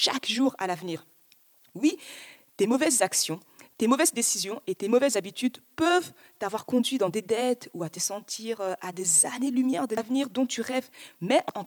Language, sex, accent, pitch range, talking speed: French, female, French, 195-265 Hz, 180 wpm